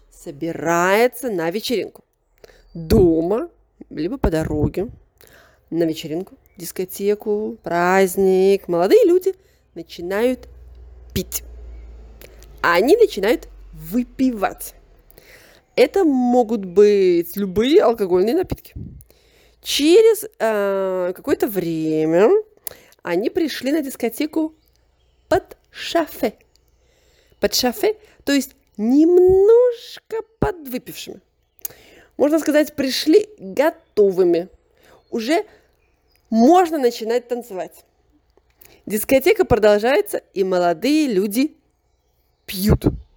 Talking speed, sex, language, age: 75 wpm, female, Russian, 30-49